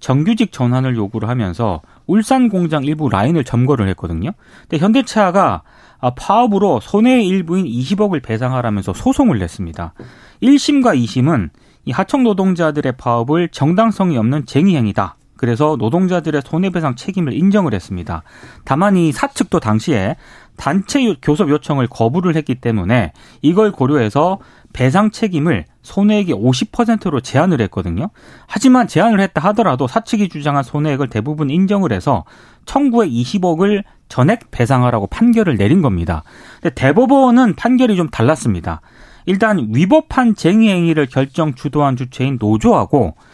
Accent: native